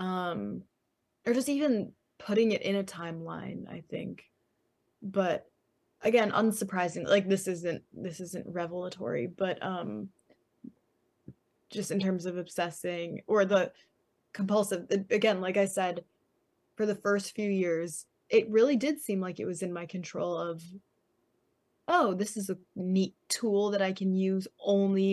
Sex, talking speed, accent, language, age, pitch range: female, 145 wpm, American, English, 20-39, 170-195 Hz